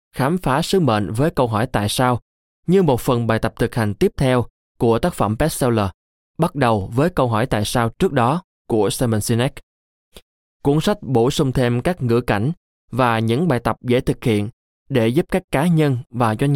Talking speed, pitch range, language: 205 wpm, 110-150 Hz, Vietnamese